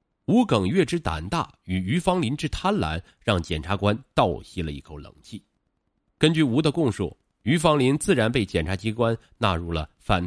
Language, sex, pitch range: Chinese, male, 90-145 Hz